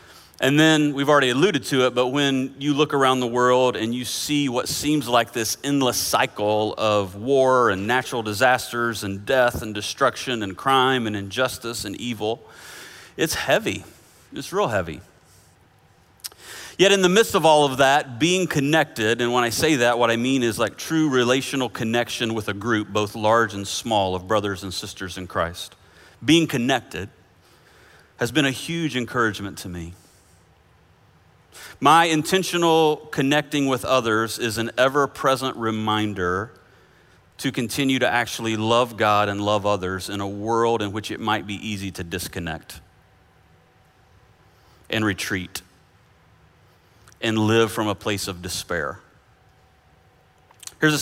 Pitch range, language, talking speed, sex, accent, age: 105-130 Hz, English, 150 wpm, male, American, 40-59